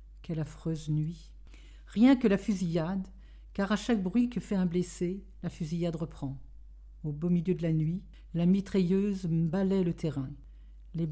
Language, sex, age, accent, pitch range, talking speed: French, female, 50-69, French, 155-200 Hz, 160 wpm